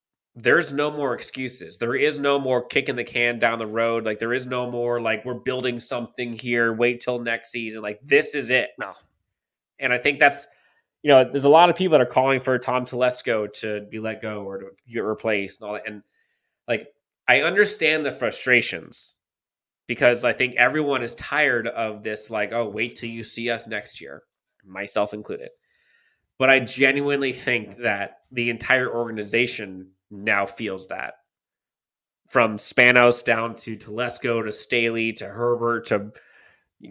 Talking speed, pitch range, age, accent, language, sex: 175 wpm, 110-135 Hz, 20-39, American, English, male